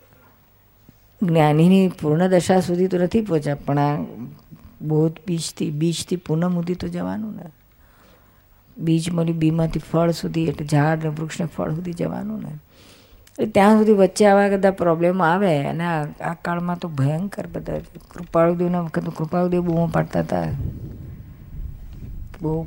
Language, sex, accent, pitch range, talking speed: Gujarati, female, native, 145-175 Hz, 135 wpm